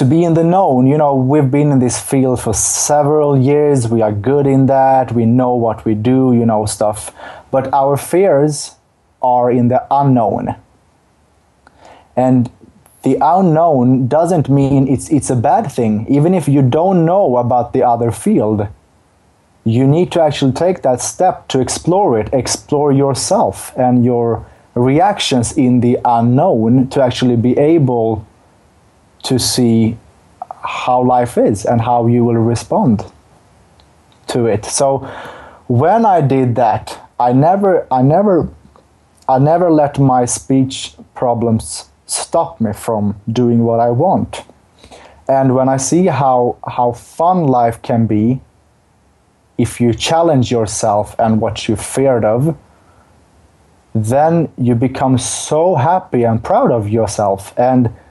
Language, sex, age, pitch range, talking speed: English, male, 30-49, 115-140 Hz, 145 wpm